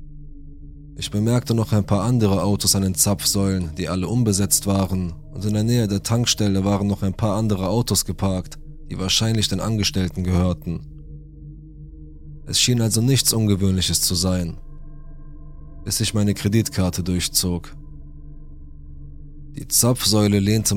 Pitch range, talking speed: 85-110 Hz, 135 wpm